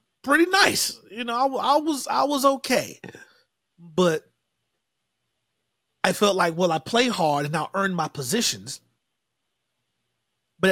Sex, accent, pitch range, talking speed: male, American, 150-190 Hz, 135 wpm